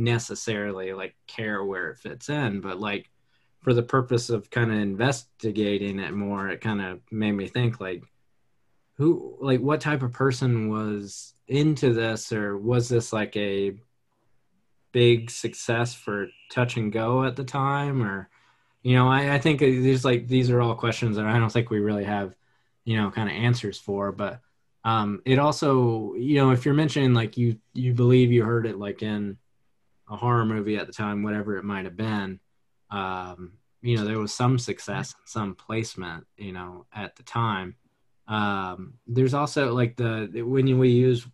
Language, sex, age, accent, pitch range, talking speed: English, male, 20-39, American, 105-125 Hz, 180 wpm